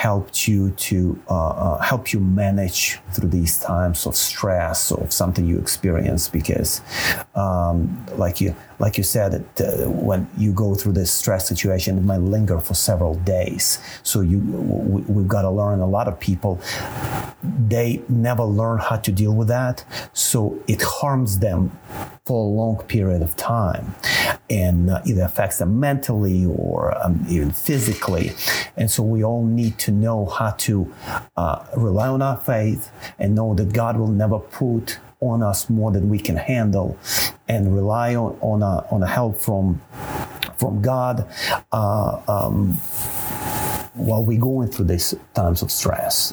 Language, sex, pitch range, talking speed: English, male, 95-115 Hz, 160 wpm